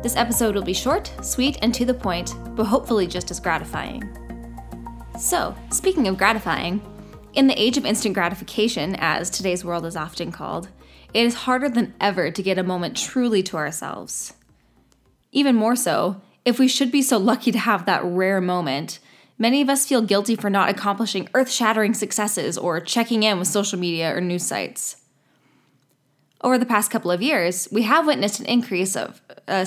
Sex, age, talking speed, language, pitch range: female, 10-29, 180 wpm, English, 185-235 Hz